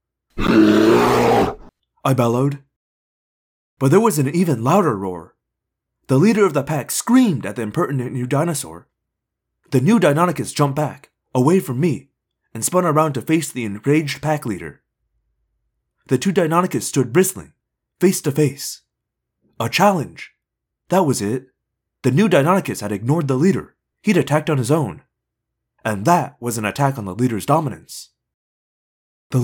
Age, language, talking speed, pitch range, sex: 20-39, English, 145 wpm, 120-170 Hz, male